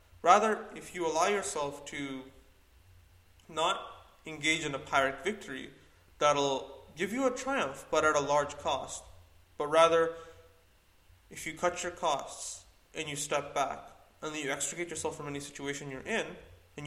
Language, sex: English, male